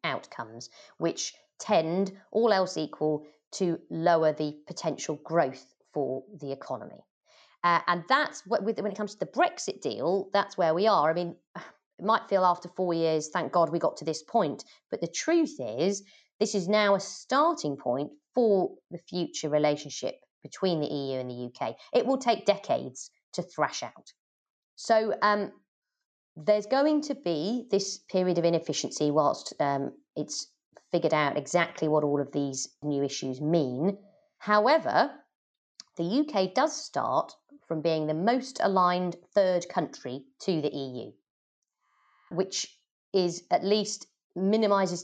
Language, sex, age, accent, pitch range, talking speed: English, female, 30-49, British, 155-225 Hz, 155 wpm